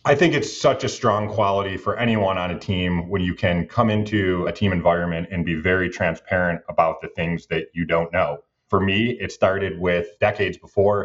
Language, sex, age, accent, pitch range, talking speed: English, male, 30-49, American, 90-110 Hz, 205 wpm